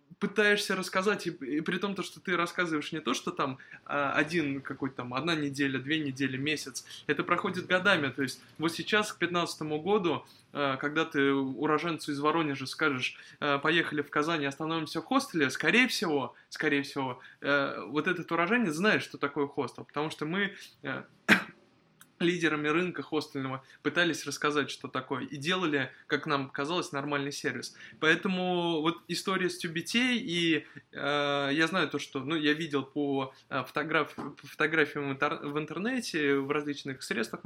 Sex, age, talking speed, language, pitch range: male, 20-39, 150 wpm, Russian, 145-170 Hz